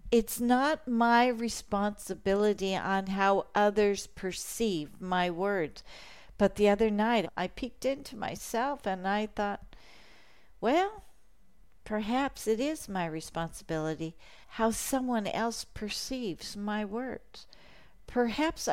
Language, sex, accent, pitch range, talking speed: English, female, American, 205-265 Hz, 110 wpm